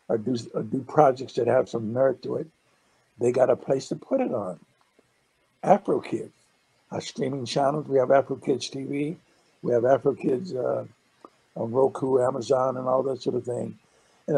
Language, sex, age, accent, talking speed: English, male, 60-79, American, 170 wpm